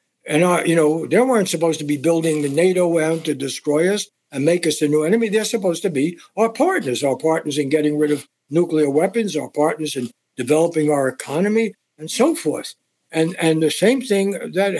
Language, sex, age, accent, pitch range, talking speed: English, male, 60-79, American, 150-185 Hz, 205 wpm